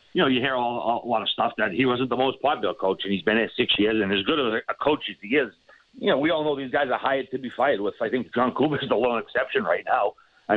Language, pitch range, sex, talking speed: English, 110-130 Hz, male, 320 wpm